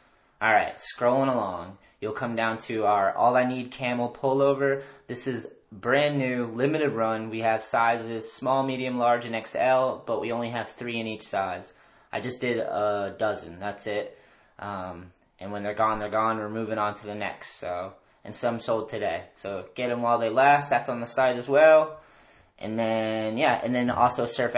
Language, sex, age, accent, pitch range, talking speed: English, male, 10-29, American, 105-125 Hz, 195 wpm